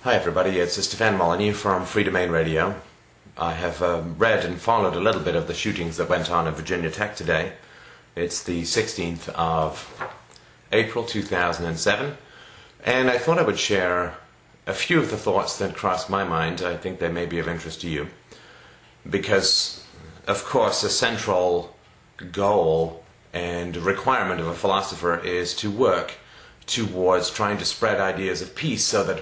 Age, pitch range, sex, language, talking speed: 30-49, 85-100 Hz, male, English, 165 wpm